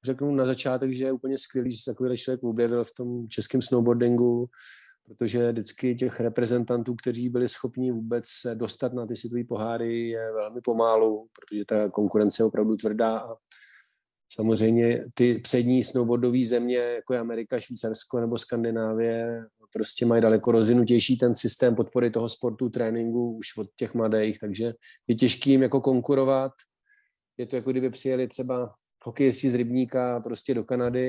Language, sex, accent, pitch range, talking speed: Czech, male, native, 115-135 Hz, 160 wpm